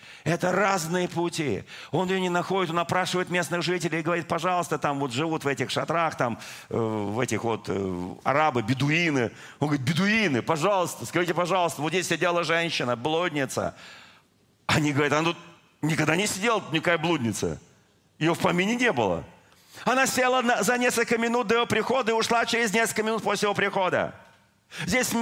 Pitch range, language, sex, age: 170-225 Hz, Russian, male, 40-59